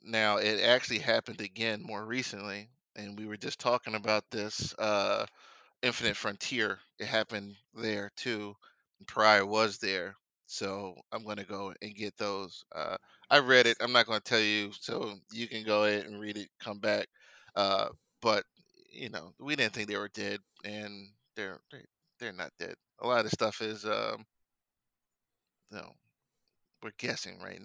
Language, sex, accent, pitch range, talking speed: English, male, American, 105-120 Hz, 170 wpm